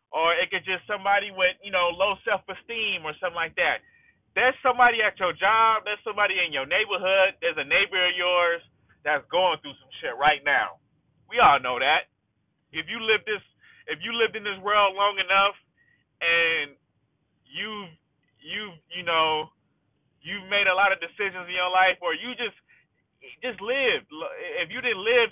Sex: male